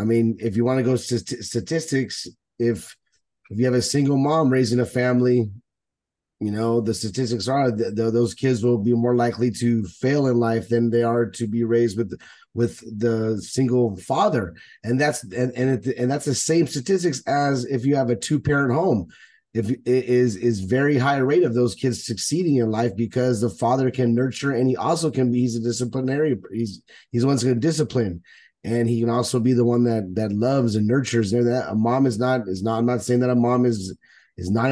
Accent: American